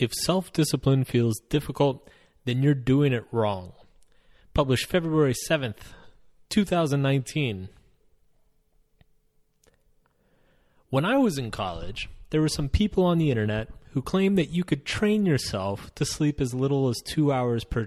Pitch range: 110-150 Hz